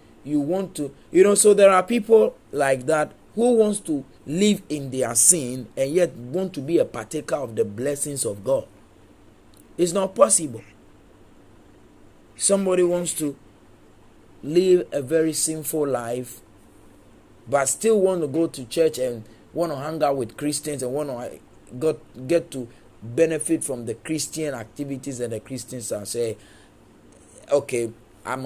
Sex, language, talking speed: male, English, 150 wpm